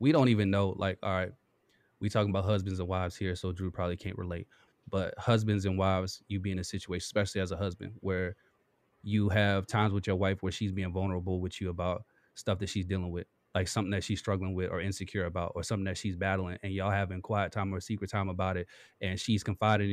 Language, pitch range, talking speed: English, 95-105 Hz, 235 wpm